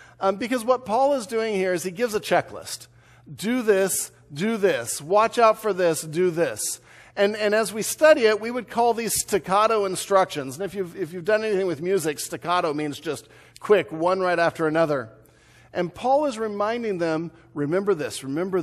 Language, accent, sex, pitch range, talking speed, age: English, American, male, 150-205 Hz, 185 wpm, 50-69